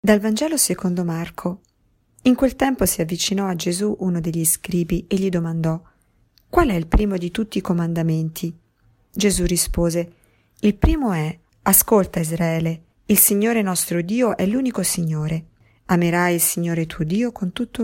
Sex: female